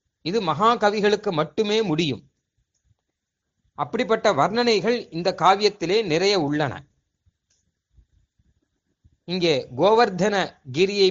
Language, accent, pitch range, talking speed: Tamil, native, 150-220 Hz, 70 wpm